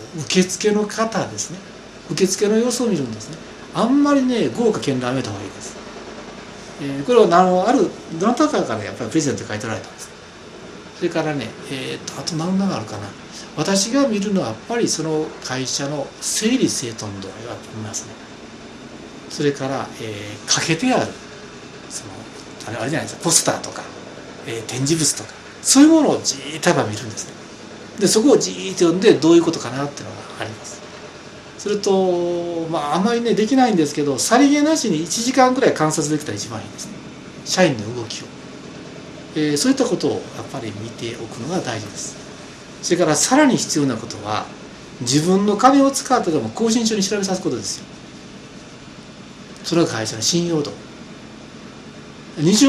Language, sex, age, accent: Japanese, male, 60-79, native